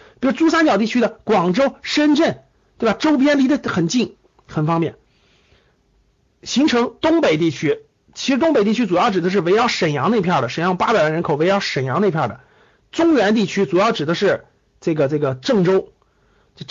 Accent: native